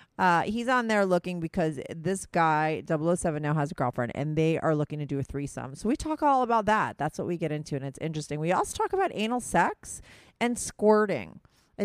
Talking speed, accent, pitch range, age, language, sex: 225 wpm, American, 155-205 Hz, 40-59, English, female